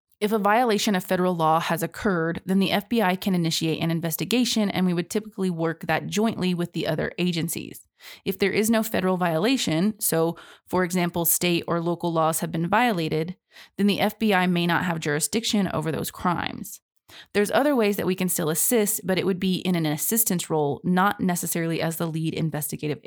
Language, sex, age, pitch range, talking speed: English, female, 20-39, 165-210 Hz, 190 wpm